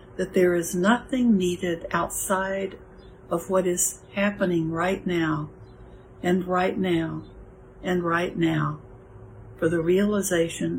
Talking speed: 115 wpm